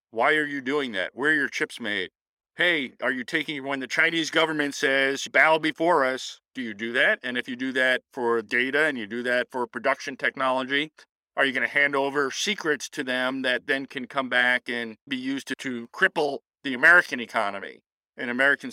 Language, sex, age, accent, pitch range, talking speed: English, male, 40-59, American, 125-150 Hz, 210 wpm